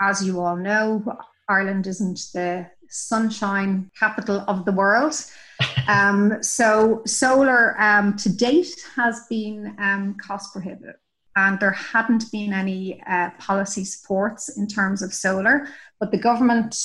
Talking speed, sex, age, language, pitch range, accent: 135 wpm, female, 30-49, English, 195-220 Hz, Irish